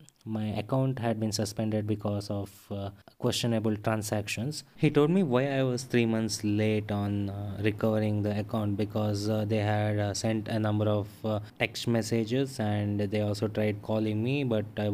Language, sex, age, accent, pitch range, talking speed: English, male, 20-39, Indian, 105-110 Hz, 175 wpm